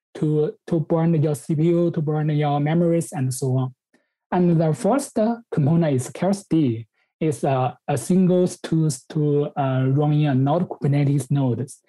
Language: English